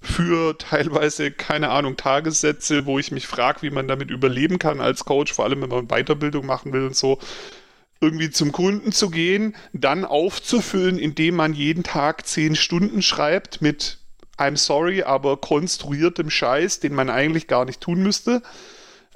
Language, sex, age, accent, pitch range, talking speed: German, male, 40-59, German, 140-185 Hz, 165 wpm